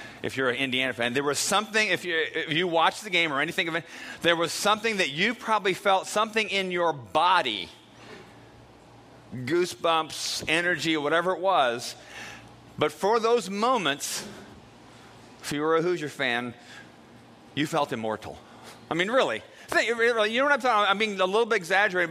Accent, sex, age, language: American, male, 40-59, English